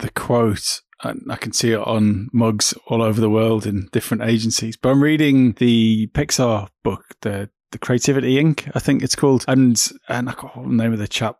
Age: 30-49